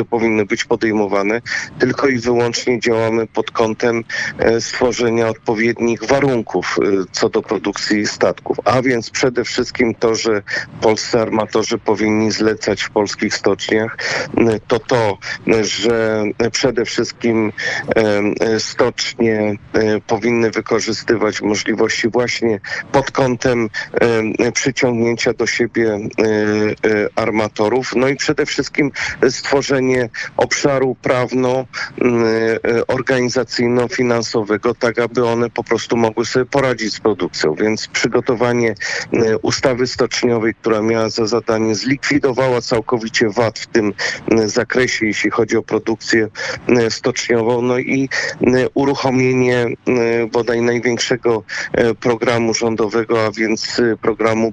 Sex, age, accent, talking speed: male, 50-69, native, 100 wpm